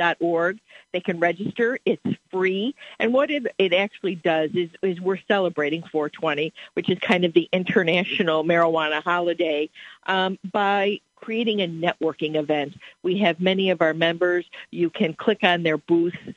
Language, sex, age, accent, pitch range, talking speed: English, female, 50-69, American, 160-185 Hz, 150 wpm